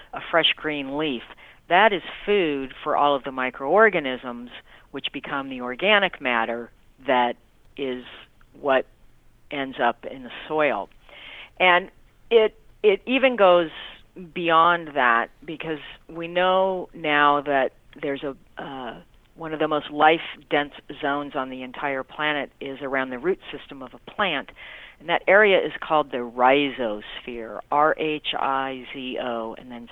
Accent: American